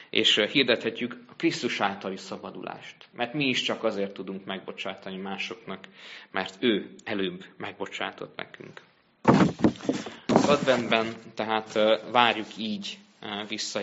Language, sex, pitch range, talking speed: Hungarian, male, 100-115 Hz, 110 wpm